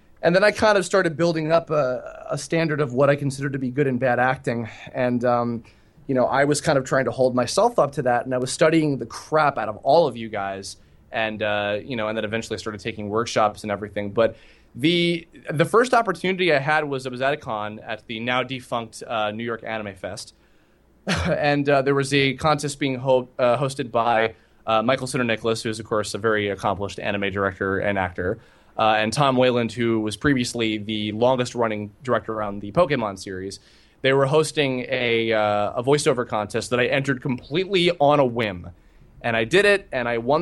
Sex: male